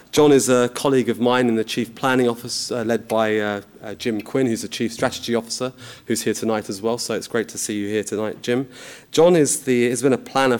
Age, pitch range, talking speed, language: 30-49, 110-125 Hz, 240 wpm, English